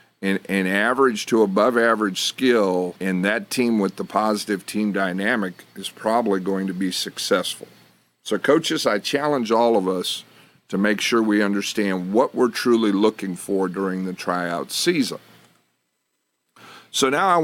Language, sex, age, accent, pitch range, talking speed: English, male, 50-69, American, 95-130 Hz, 155 wpm